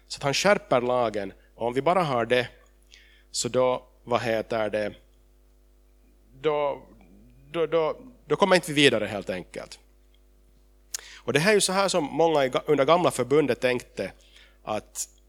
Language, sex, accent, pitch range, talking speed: Swedish, male, Finnish, 120-155 Hz, 155 wpm